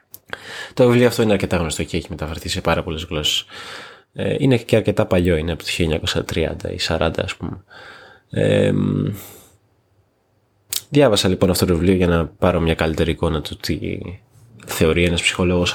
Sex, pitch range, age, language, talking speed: male, 80-100 Hz, 20-39, Greek, 160 wpm